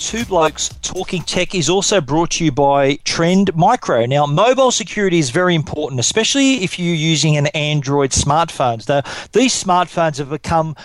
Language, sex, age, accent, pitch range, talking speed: English, male, 40-59, Australian, 155-200 Hz, 165 wpm